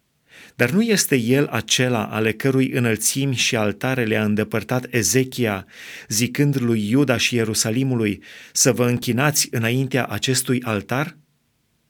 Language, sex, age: Romanian, male, 30-49